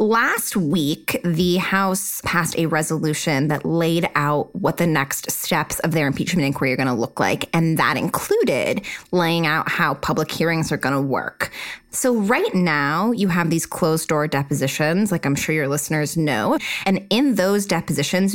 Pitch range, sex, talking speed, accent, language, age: 155-220 Hz, female, 175 wpm, American, English, 20-39